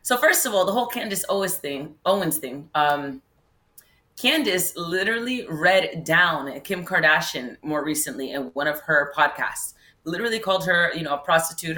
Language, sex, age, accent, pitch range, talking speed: English, female, 30-49, American, 165-220 Hz, 165 wpm